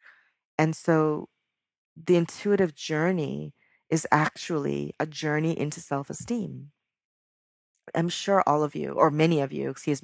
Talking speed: 125 wpm